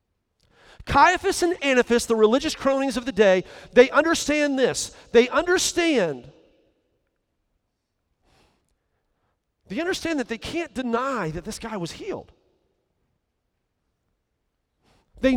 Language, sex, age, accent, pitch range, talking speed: English, male, 40-59, American, 235-330 Hz, 100 wpm